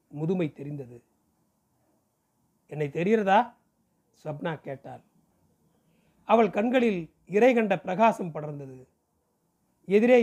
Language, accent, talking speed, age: Tamil, native, 70 wpm, 40-59